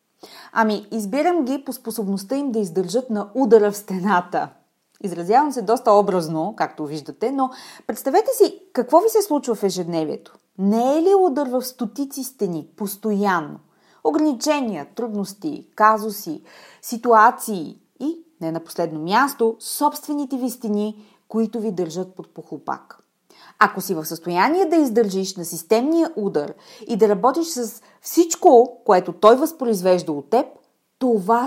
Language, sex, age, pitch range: Bulgarian, female, 30-49, 195-270 Hz